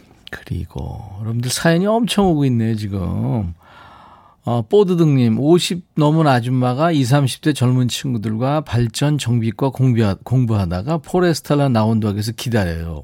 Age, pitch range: 40-59, 110-155 Hz